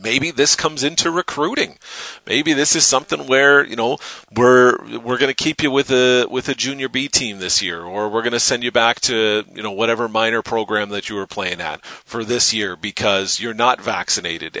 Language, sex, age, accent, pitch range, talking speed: English, male, 40-59, American, 110-135 Hz, 205 wpm